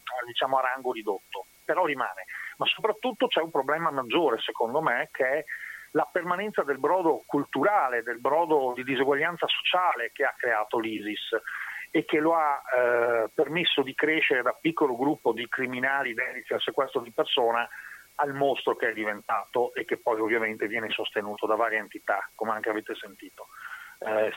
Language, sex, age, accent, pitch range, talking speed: Italian, male, 40-59, native, 125-180 Hz, 165 wpm